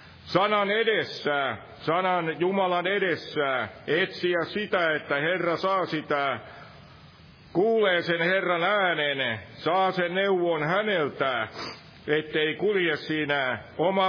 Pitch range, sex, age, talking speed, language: 150-185 Hz, male, 50-69, 100 wpm, Finnish